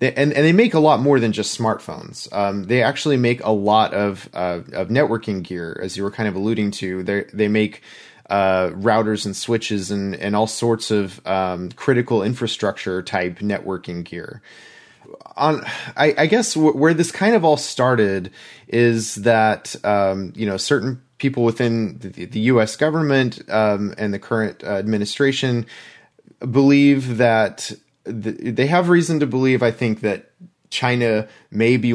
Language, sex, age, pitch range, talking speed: English, male, 30-49, 100-130 Hz, 165 wpm